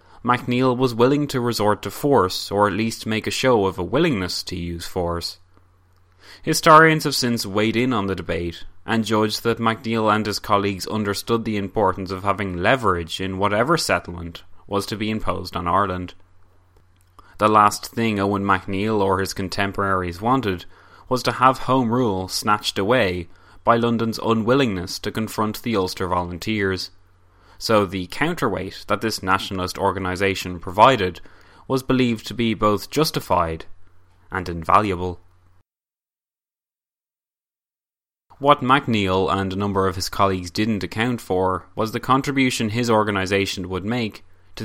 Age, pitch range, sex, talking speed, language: 20-39, 90-115 Hz, male, 145 wpm, English